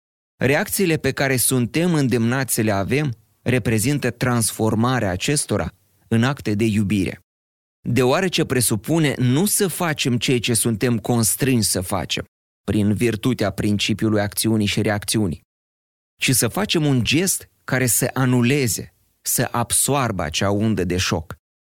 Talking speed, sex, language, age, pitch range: 130 wpm, male, Romanian, 30-49, 100-130 Hz